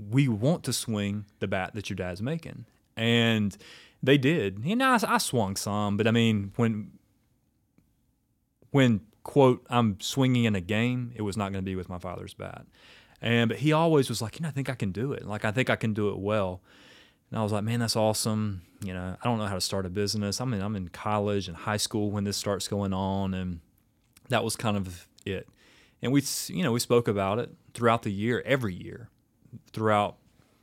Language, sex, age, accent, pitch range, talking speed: English, male, 30-49, American, 100-120 Hz, 215 wpm